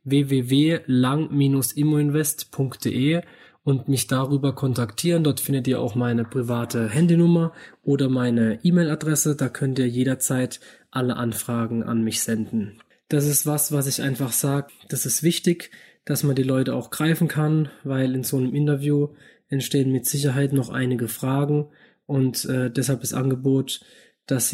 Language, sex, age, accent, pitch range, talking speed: German, male, 20-39, German, 130-155 Hz, 145 wpm